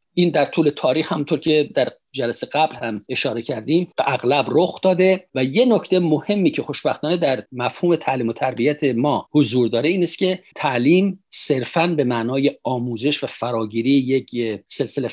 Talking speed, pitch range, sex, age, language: 165 wpm, 125-170 Hz, male, 50-69, Persian